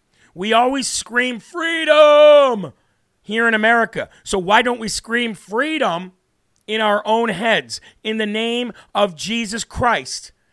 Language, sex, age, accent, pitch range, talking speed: English, male, 40-59, American, 205-235 Hz, 130 wpm